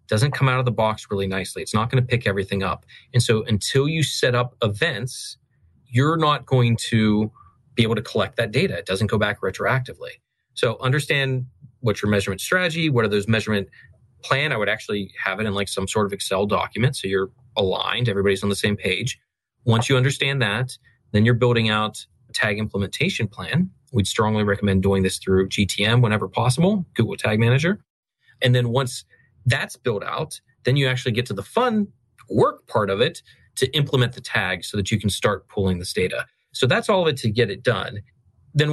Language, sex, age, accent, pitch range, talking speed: English, male, 30-49, American, 105-130 Hz, 205 wpm